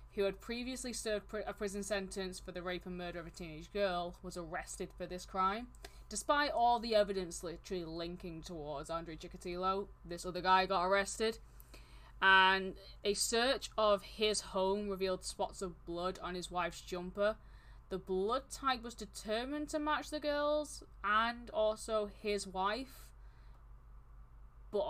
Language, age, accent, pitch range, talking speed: English, 10-29, British, 180-225 Hz, 150 wpm